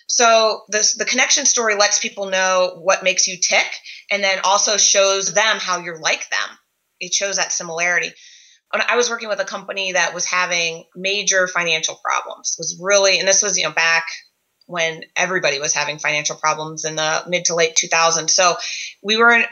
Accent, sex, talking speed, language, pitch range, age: American, female, 190 wpm, English, 175-210 Hz, 20-39